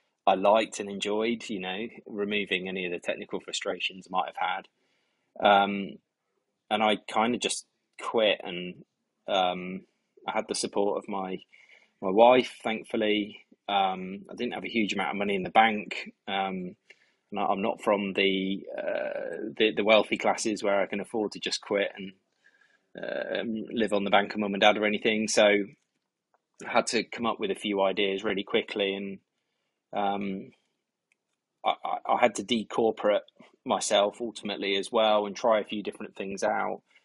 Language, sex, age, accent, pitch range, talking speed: English, male, 20-39, British, 95-105 Hz, 175 wpm